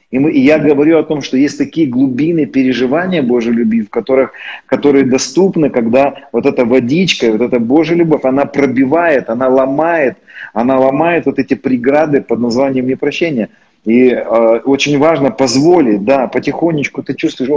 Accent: native